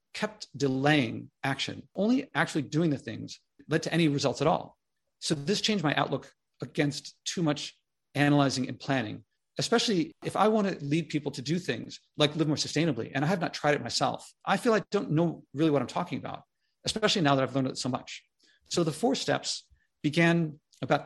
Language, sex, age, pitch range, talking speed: English, male, 40-59, 135-170 Hz, 200 wpm